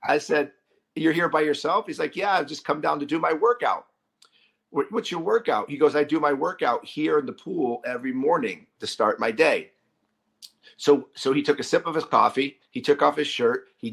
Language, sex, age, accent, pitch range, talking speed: English, male, 50-69, American, 140-170 Hz, 220 wpm